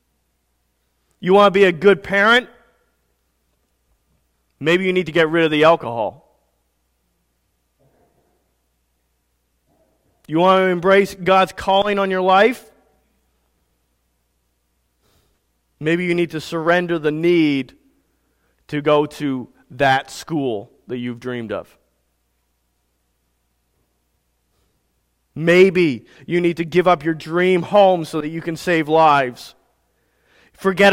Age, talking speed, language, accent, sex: 40-59, 110 wpm, English, American, male